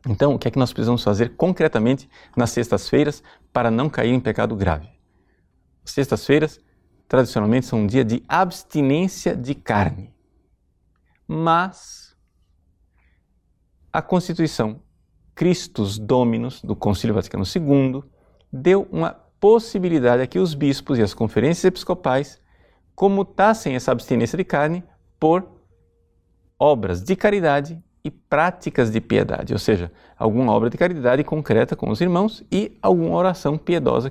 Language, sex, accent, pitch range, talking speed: Portuguese, male, Brazilian, 100-155 Hz, 130 wpm